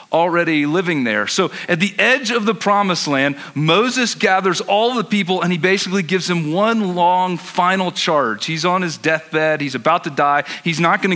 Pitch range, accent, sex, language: 150-195 Hz, American, male, English